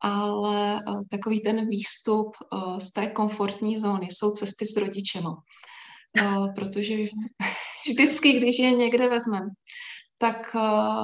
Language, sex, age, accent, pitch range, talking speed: Czech, female, 20-39, native, 200-220 Hz, 105 wpm